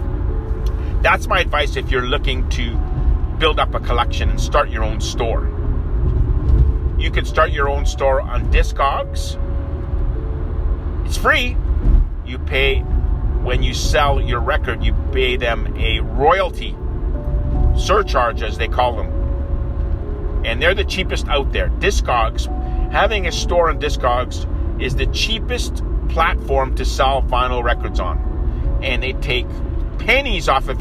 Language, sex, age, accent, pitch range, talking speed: English, male, 50-69, American, 70-80 Hz, 135 wpm